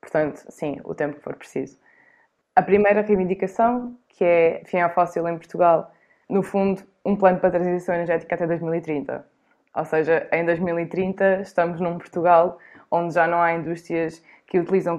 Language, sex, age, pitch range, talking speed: Portuguese, female, 20-39, 165-190 Hz, 160 wpm